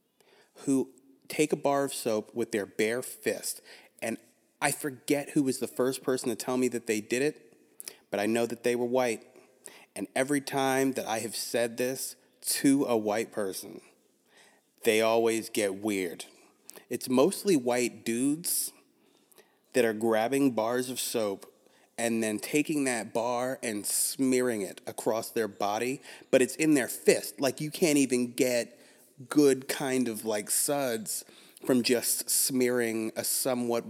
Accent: American